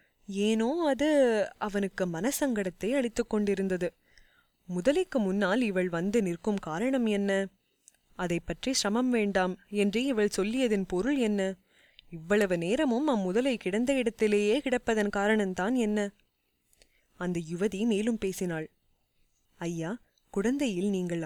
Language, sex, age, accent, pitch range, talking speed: Tamil, female, 20-39, native, 180-230 Hz, 105 wpm